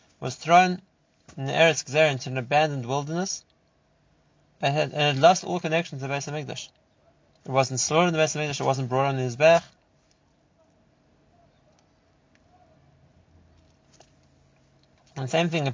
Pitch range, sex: 125-155 Hz, male